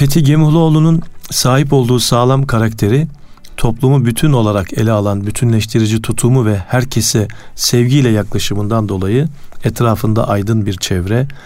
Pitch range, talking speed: 100-130 Hz, 115 wpm